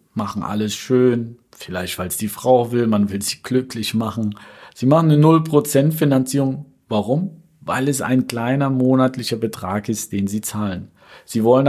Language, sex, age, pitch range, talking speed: German, male, 40-59, 105-135 Hz, 165 wpm